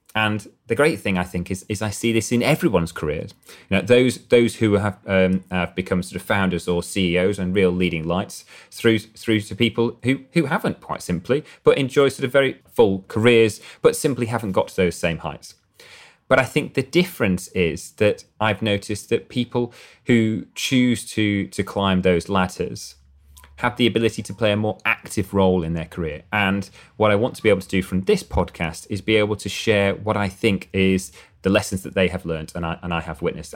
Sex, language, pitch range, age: male, English, 90-120 Hz, 30-49